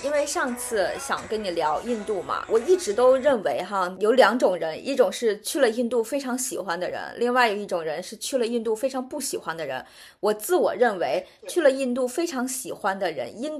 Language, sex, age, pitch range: Chinese, female, 20-39, 205-275 Hz